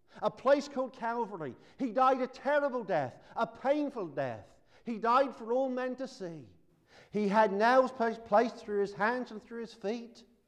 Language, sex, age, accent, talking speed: English, male, 50-69, British, 170 wpm